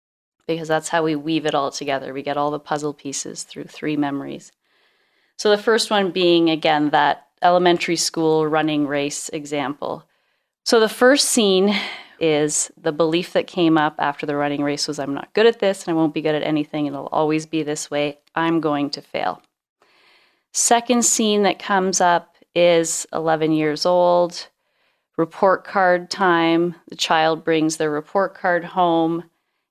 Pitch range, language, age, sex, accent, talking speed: 150-175 Hz, English, 30-49, female, American, 170 wpm